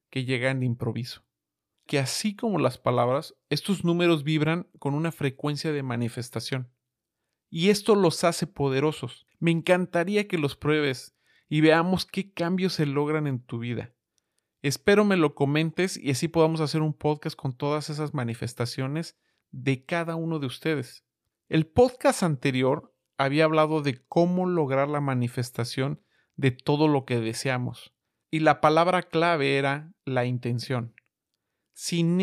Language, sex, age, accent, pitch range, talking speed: Spanish, male, 40-59, Mexican, 130-170 Hz, 145 wpm